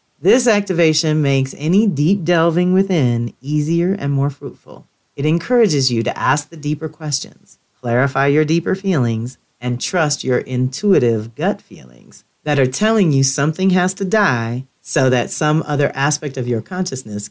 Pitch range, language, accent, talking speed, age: 120-160 Hz, English, American, 155 wpm, 40-59